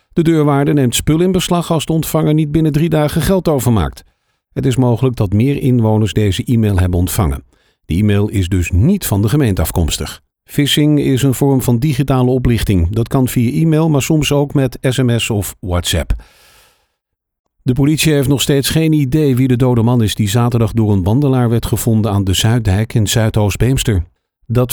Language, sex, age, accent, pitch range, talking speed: Dutch, male, 50-69, Dutch, 105-140 Hz, 185 wpm